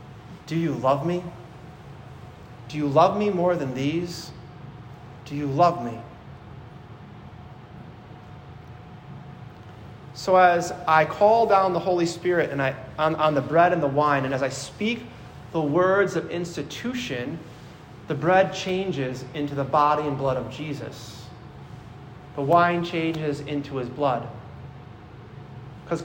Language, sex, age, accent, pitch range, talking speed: English, male, 30-49, American, 135-175 Hz, 125 wpm